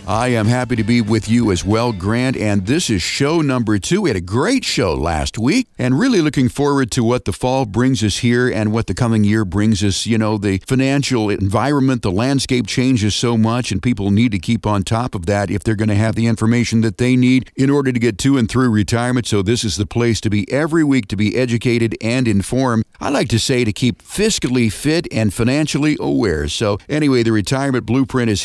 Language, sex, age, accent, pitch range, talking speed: English, male, 50-69, American, 110-130 Hz, 230 wpm